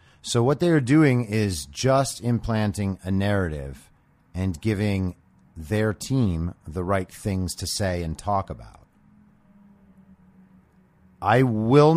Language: English